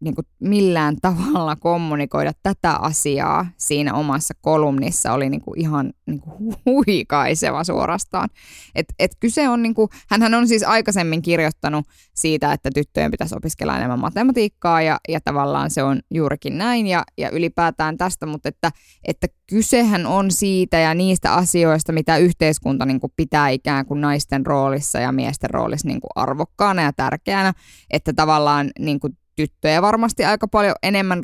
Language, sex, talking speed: Finnish, female, 155 wpm